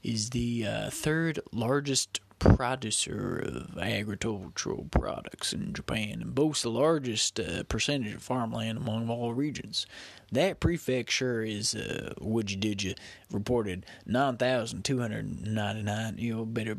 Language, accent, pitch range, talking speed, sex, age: English, American, 105-145 Hz, 125 wpm, male, 20-39